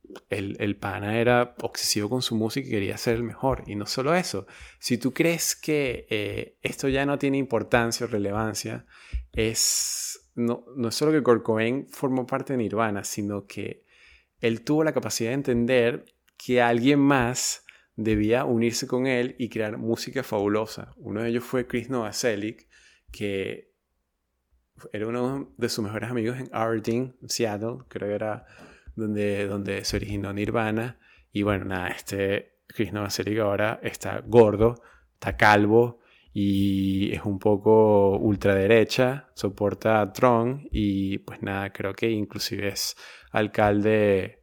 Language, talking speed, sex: Spanish, 150 wpm, male